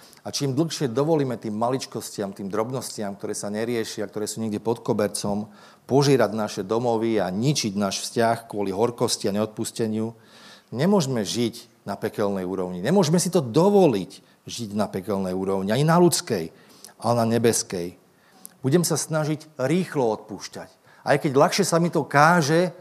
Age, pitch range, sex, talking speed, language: 40-59, 110-165 Hz, male, 155 wpm, Slovak